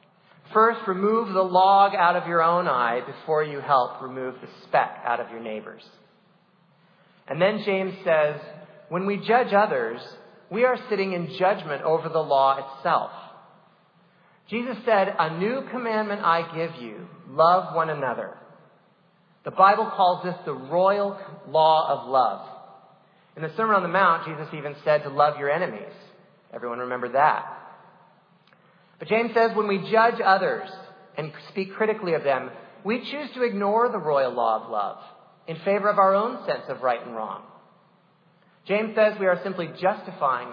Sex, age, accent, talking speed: male, 40-59, American, 160 wpm